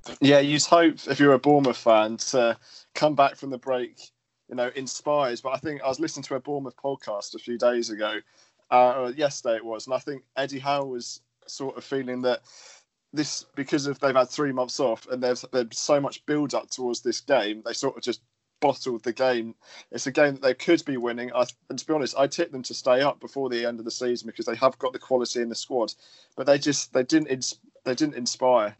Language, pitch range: English, 120-140 Hz